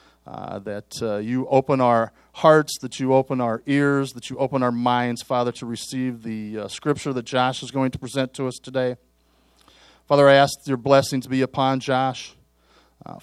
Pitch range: 120-145 Hz